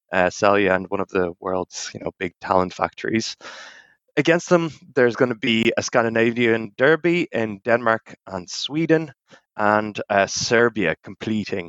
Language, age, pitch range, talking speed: English, 20-39, 100-125 Hz, 150 wpm